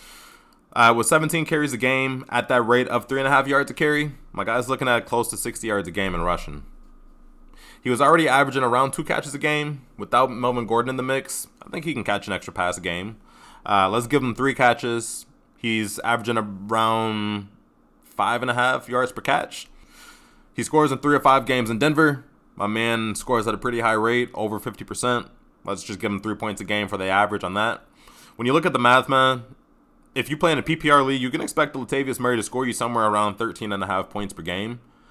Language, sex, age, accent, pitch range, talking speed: English, male, 20-39, American, 105-130 Hz, 210 wpm